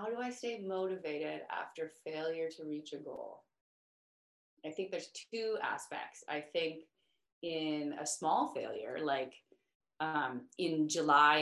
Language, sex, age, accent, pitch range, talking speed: English, female, 20-39, American, 145-180 Hz, 135 wpm